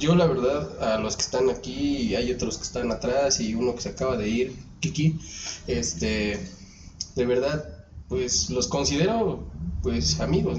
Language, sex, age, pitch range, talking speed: Spanish, male, 20-39, 95-160 Hz, 170 wpm